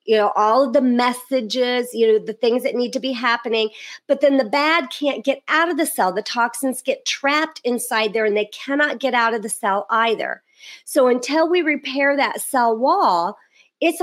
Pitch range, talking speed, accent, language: 220-290 Hz, 205 wpm, American, English